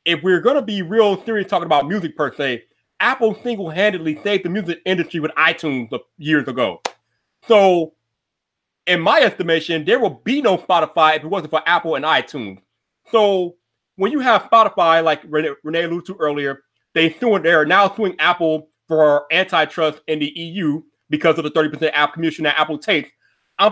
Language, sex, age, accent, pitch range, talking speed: English, male, 30-49, American, 160-220 Hz, 175 wpm